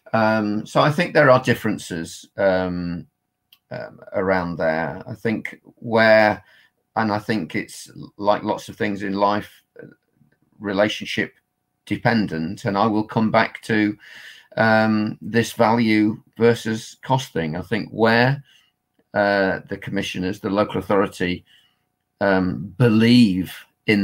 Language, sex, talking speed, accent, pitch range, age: English, male, 120 wpm, British, 95-110 Hz, 40-59